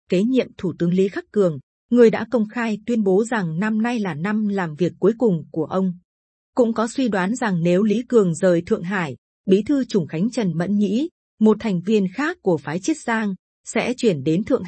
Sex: female